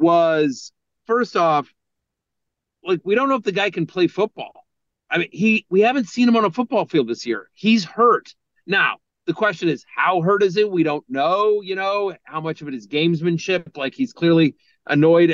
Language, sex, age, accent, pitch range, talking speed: English, male, 40-59, American, 155-195 Hz, 200 wpm